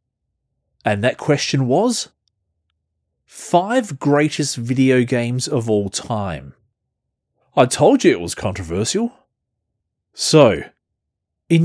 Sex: male